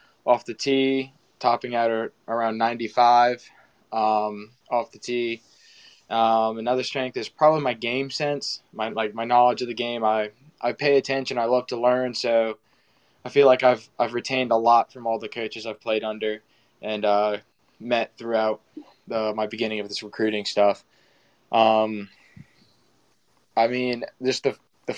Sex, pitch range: male, 115-130 Hz